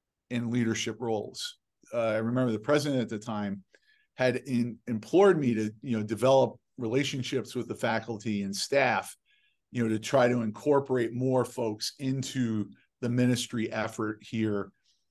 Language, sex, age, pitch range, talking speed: English, male, 40-59, 110-135 Hz, 150 wpm